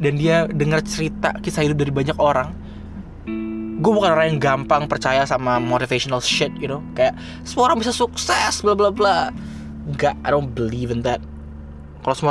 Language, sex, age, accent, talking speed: Indonesian, male, 20-39, native, 170 wpm